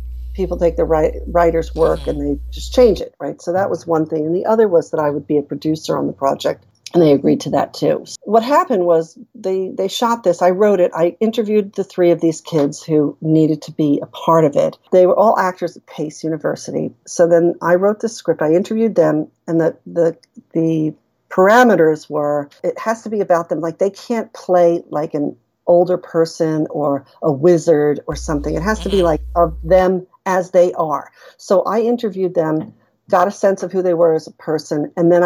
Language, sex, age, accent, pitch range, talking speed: English, female, 50-69, American, 155-190 Hz, 220 wpm